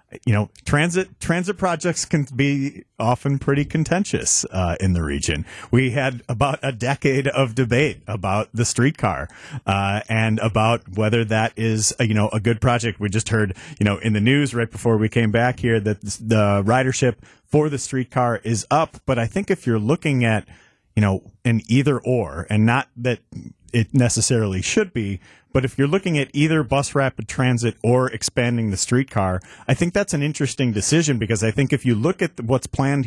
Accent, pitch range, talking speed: American, 110-140 Hz, 190 wpm